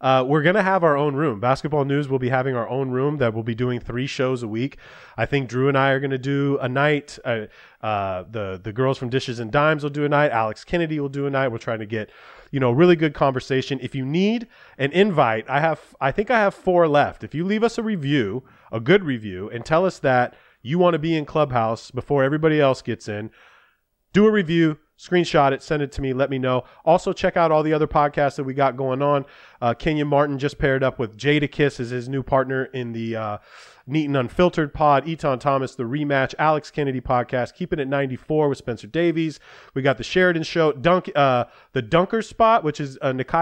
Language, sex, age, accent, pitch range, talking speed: English, male, 30-49, American, 125-155 Hz, 230 wpm